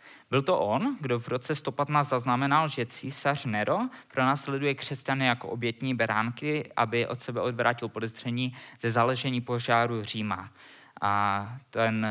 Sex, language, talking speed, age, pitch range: male, Czech, 145 wpm, 20-39, 115-145 Hz